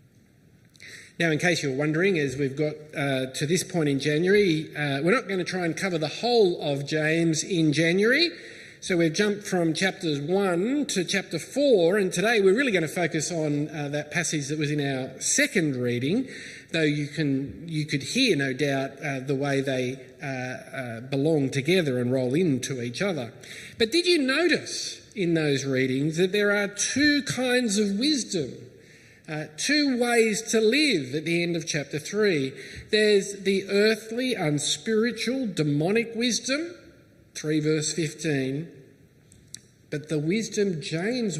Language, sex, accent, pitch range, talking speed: English, male, Australian, 140-205 Hz, 160 wpm